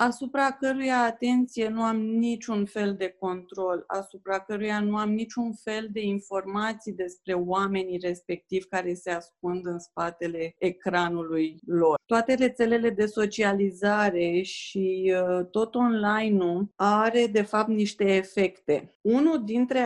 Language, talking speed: Romanian, 125 wpm